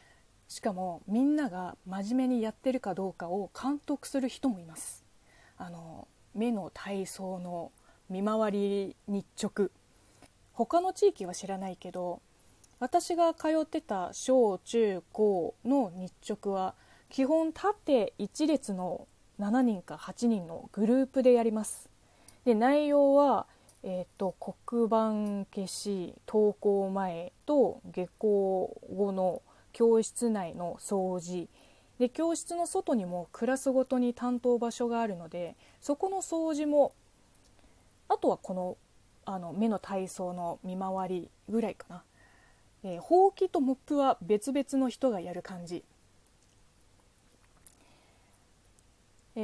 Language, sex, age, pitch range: Japanese, female, 20-39, 180-260 Hz